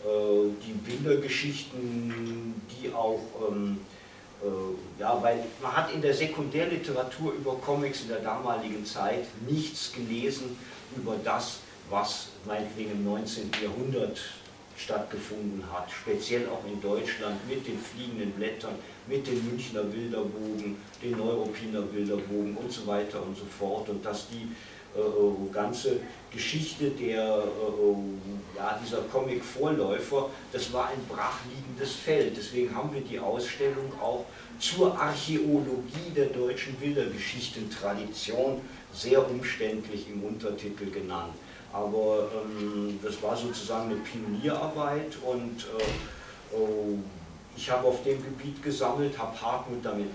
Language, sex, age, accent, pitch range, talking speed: German, male, 50-69, German, 105-130 Hz, 115 wpm